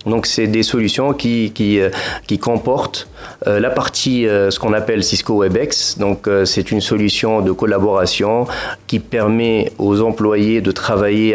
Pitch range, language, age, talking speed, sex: 100-130 Hz, Arabic, 40-59, 145 wpm, male